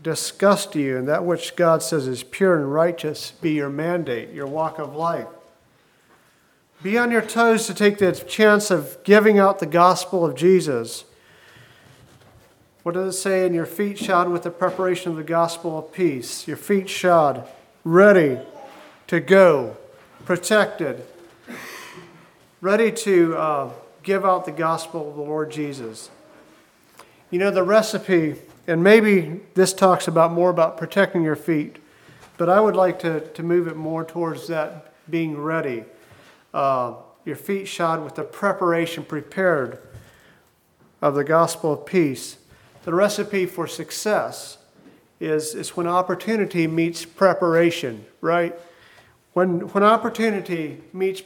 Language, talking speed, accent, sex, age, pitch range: English, 145 wpm, American, male, 40-59, 155-190 Hz